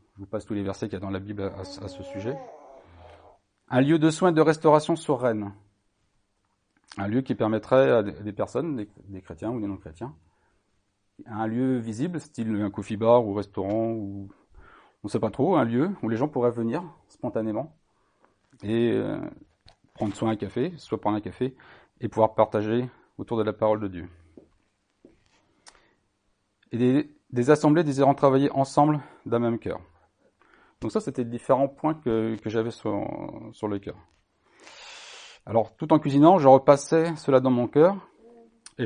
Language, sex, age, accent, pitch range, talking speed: French, male, 40-59, French, 105-135 Hz, 170 wpm